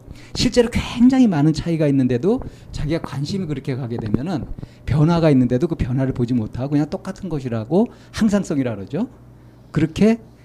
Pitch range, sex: 125-160 Hz, male